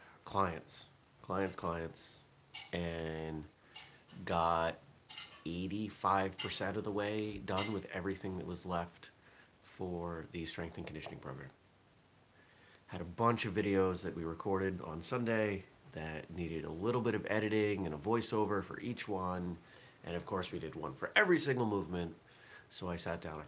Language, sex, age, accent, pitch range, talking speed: English, male, 30-49, American, 85-100 Hz, 150 wpm